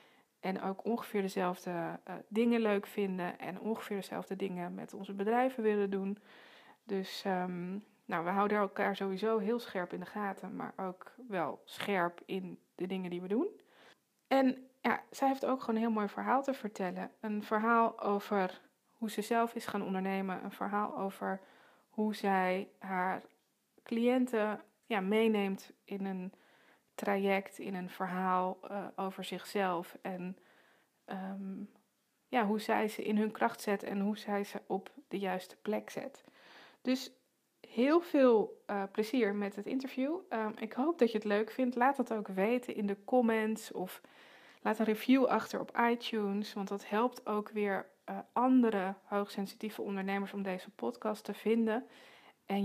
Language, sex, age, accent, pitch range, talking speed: Dutch, female, 20-39, Dutch, 195-225 Hz, 155 wpm